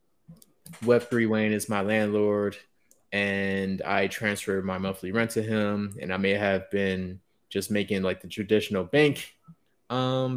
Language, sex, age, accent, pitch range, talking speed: English, male, 20-39, American, 100-125 Hz, 140 wpm